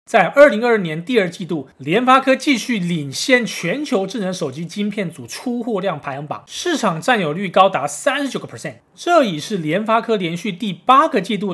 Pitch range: 155-220 Hz